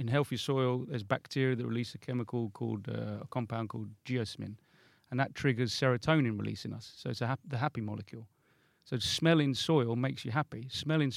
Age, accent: 40-59, British